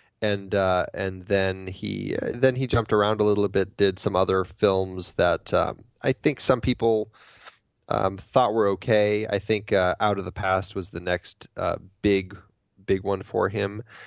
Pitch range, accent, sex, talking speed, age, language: 95-115 Hz, American, male, 190 wpm, 20-39, English